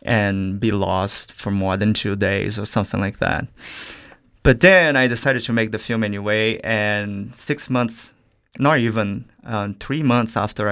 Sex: male